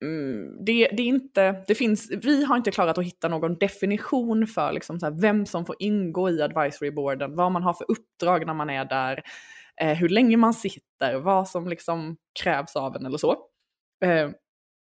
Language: Swedish